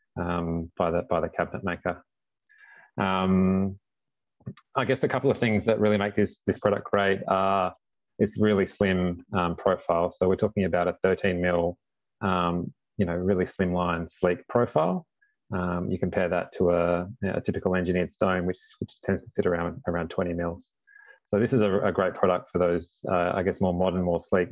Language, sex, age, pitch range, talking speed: English, male, 30-49, 90-100 Hz, 195 wpm